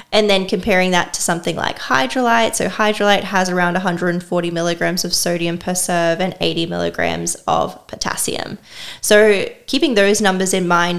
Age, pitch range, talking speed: 10-29, 175-200 Hz, 160 wpm